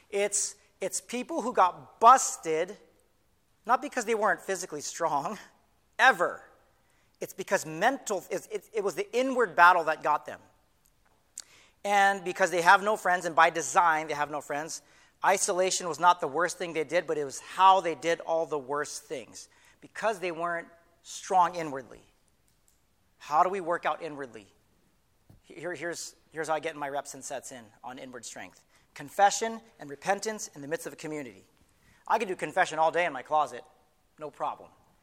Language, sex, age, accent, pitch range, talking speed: English, male, 40-59, American, 155-195 Hz, 175 wpm